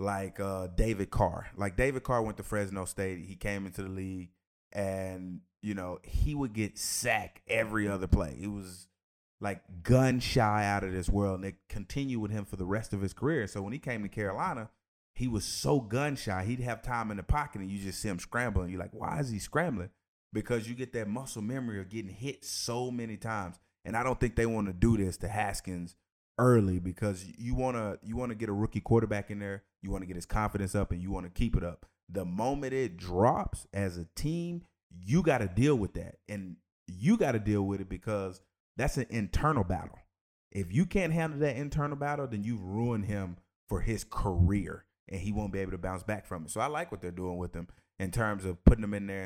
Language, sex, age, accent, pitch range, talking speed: English, male, 30-49, American, 95-115 Hz, 230 wpm